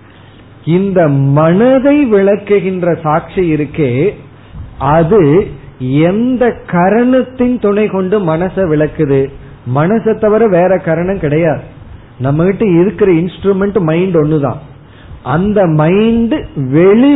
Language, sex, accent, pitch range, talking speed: Tamil, male, native, 140-195 Hz, 85 wpm